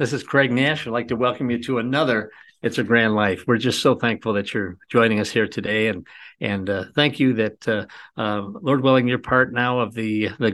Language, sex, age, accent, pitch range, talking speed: English, male, 50-69, American, 105-130 Hz, 235 wpm